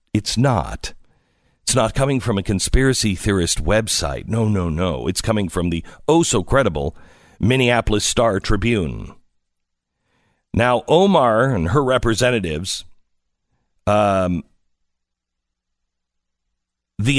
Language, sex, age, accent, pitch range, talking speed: English, male, 50-69, American, 95-135 Hz, 100 wpm